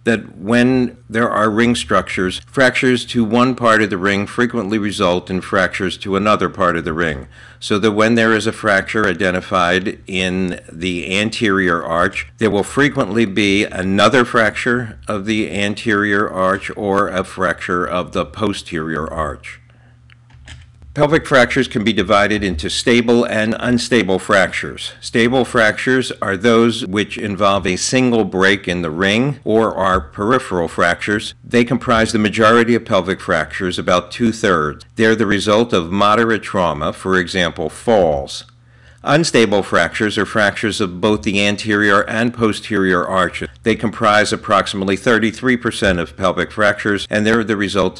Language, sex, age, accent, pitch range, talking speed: English, male, 50-69, American, 90-115 Hz, 150 wpm